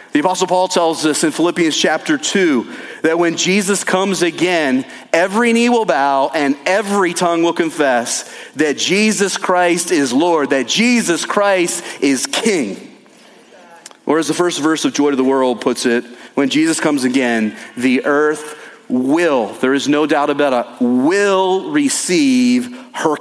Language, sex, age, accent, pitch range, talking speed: English, male, 40-59, American, 150-210 Hz, 160 wpm